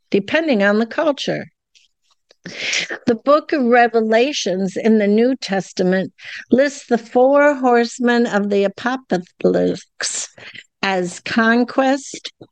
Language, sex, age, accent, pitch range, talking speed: English, female, 60-79, American, 195-250 Hz, 100 wpm